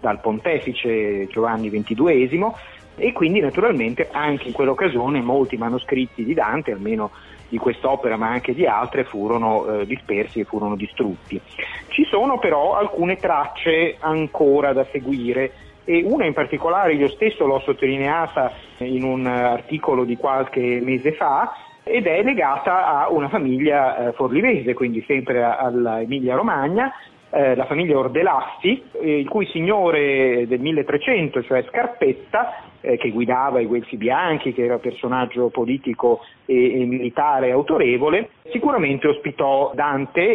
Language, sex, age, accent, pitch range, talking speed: Italian, male, 40-59, native, 125-155 Hz, 130 wpm